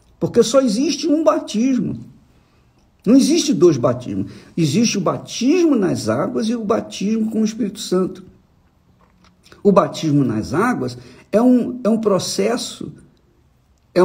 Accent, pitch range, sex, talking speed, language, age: Brazilian, 125-205 Hz, male, 130 wpm, Portuguese, 50-69